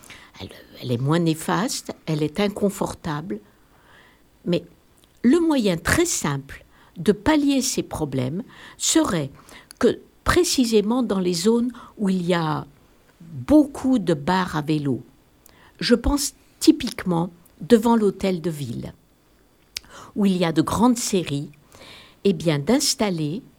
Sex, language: female, French